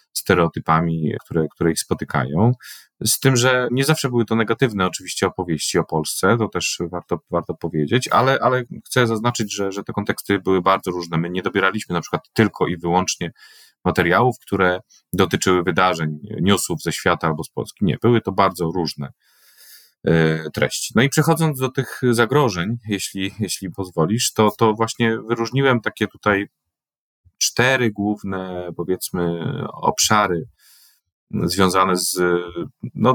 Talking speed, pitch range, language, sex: 145 wpm, 85-115 Hz, Polish, male